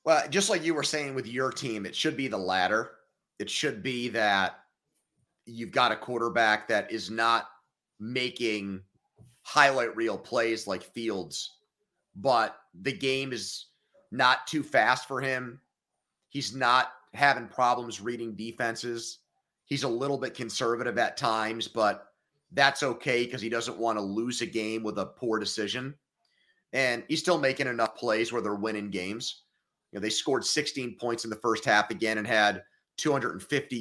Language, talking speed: English, 160 wpm